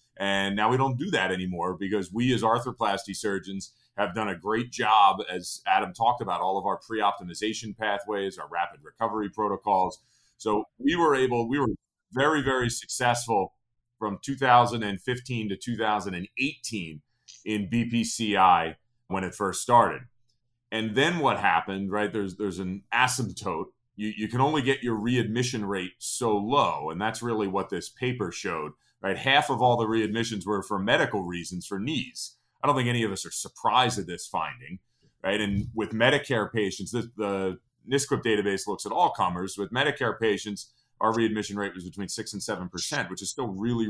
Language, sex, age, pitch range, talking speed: English, male, 30-49, 100-120 Hz, 170 wpm